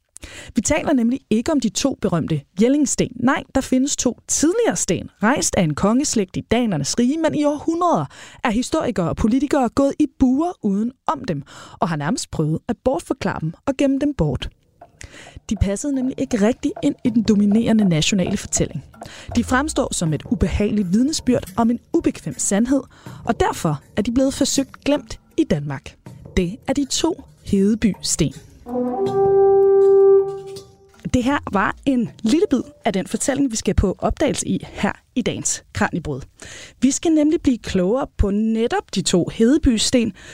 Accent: native